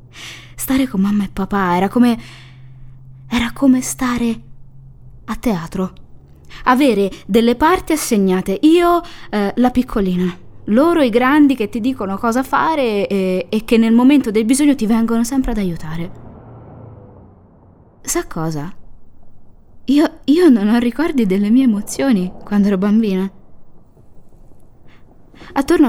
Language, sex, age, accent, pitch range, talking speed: Italian, female, 20-39, native, 170-250 Hz, 125 wpm